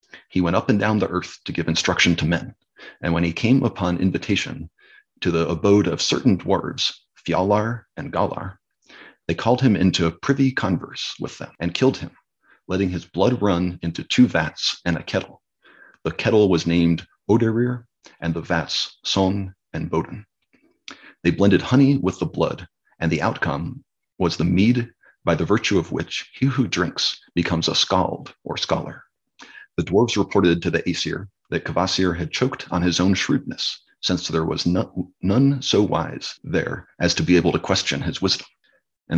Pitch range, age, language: 85-100 Hz, 40-59, English